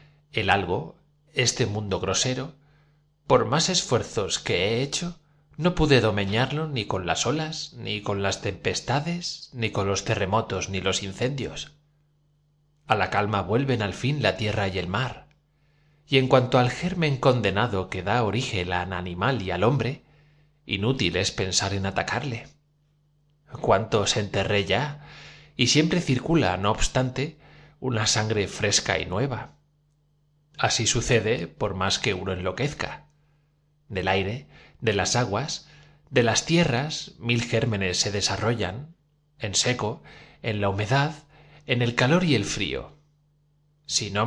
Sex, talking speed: male, 140 wpm